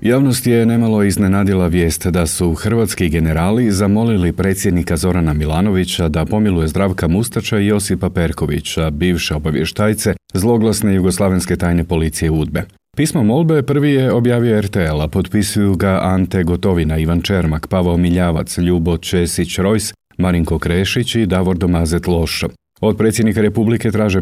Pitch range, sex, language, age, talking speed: 85-105 Hz, male, Croatian, 40-59, 135 wpm